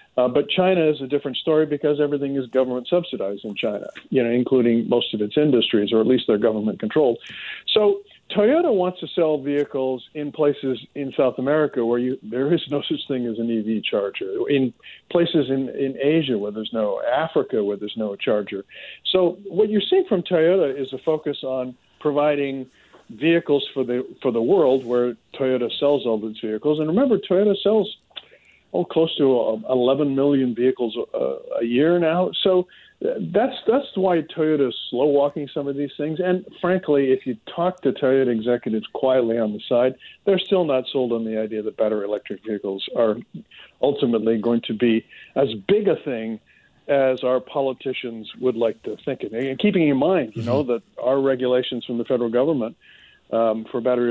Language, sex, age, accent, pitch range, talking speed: English, male, 50-69, American, 120-160 Hz, 180 wpm